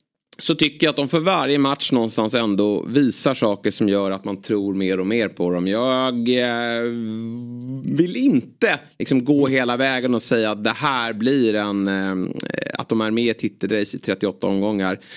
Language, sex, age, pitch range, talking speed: Swedish, male, 30-49, 105-125 Hz, 185 wpm